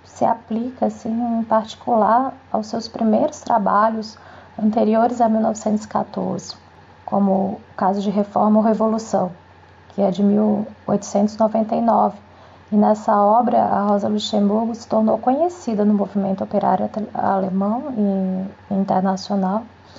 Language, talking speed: Portuguese, 110 wpm